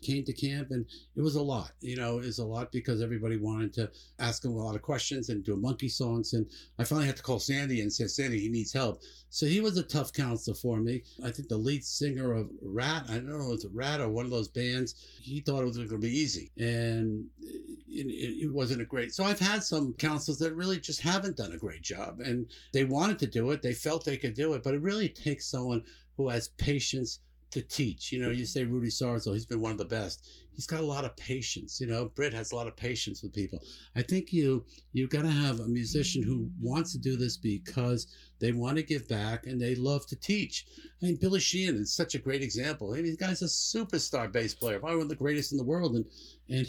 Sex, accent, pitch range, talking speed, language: male, American, 115-150 Hz, 250 wpm, English